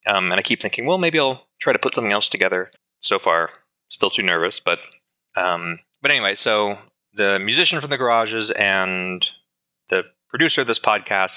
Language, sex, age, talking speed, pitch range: English, male, 20-39, 185 wpm, 90-115 Hz